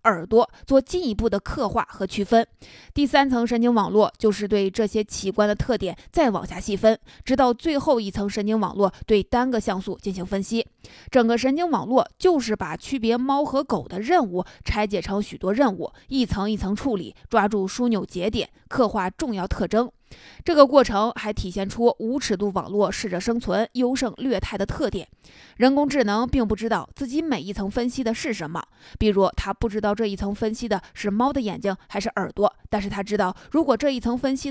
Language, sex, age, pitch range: Chinese, female, 20-39, 200-250 Hz